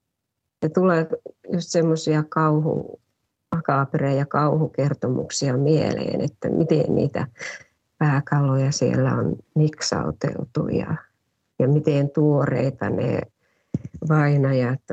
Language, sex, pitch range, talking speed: Finnish, female, 140-170 Hz, 85 wpm